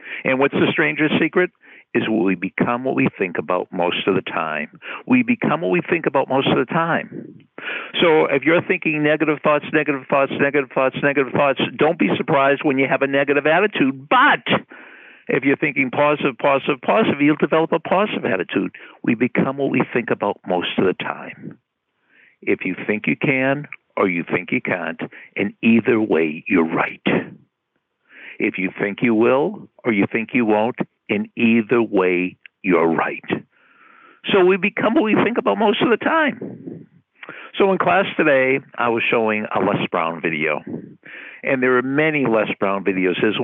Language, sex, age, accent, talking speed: English, male, 60-79, American, 180 wpm